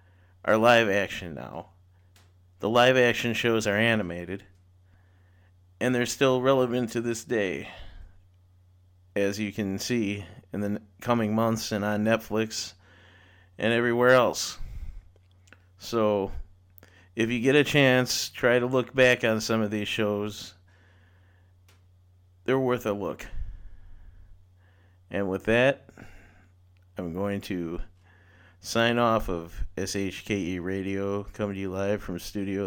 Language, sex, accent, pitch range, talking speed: English, male, American, 90-110 Hz, 120 wpm